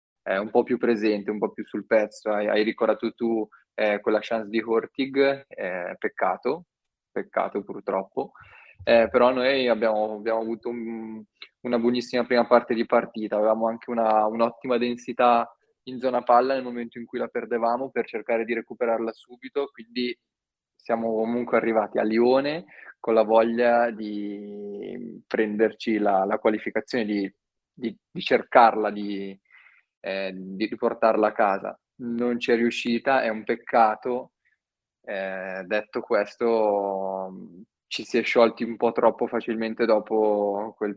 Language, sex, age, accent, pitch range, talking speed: Italian, male, 20-39, native, 105-120 Hz, 140 wpm